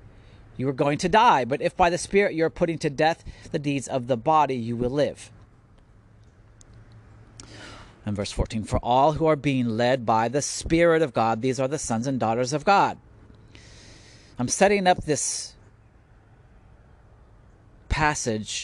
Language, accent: English, American